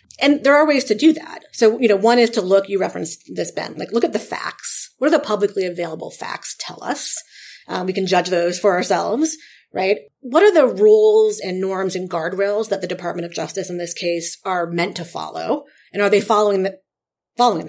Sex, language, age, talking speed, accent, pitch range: female, English, 30-49, 220 wpm, American, 180-225 Hz